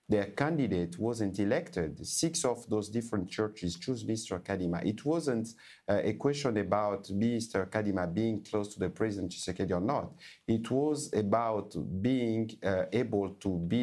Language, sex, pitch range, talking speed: English, male, 100-120 Hz, 155 wpm